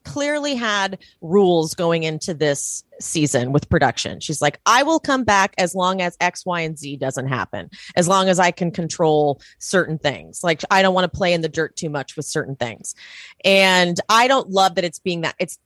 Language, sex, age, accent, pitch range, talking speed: English, female, 30-49, American, 160-200 Hz, 210 wpm